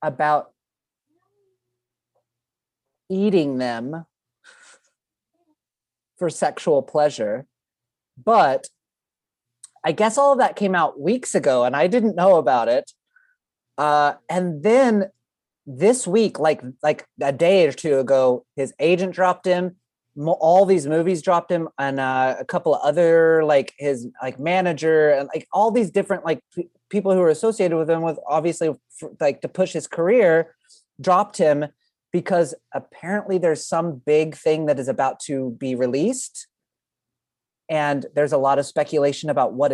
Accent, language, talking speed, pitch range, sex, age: American, English, 140 wpm, 140-190 Hz, male, 30-49